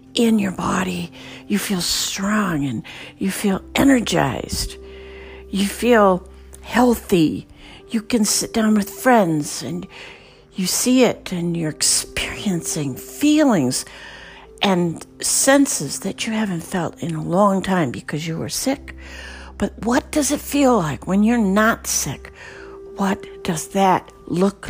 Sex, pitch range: female, 130-205 Hz